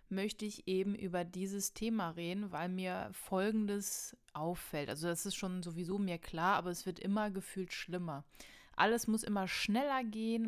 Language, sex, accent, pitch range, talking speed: German, female, German, 185-220 Hz, 165 wpm